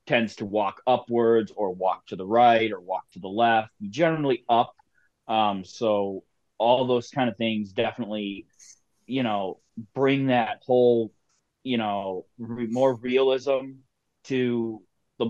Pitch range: 110-125 Hz